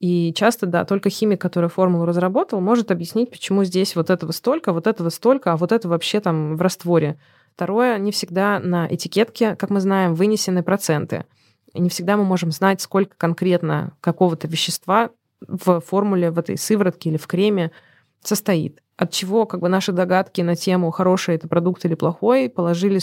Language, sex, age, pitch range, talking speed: Russian, female, 20-39, 170-200 Hz, 175 wpm